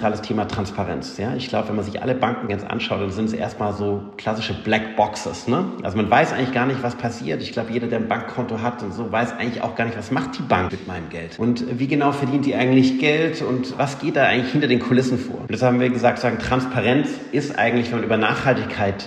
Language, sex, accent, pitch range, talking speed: German, male, German, 105-125 Hz, 250 wpm